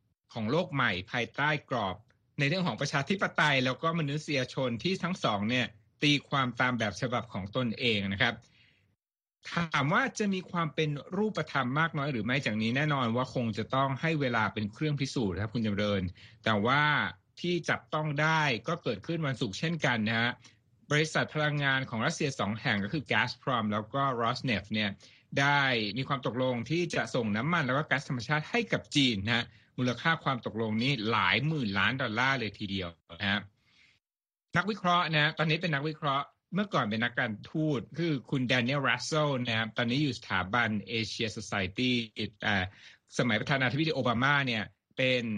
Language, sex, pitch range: Thai, male, 115-150 Hz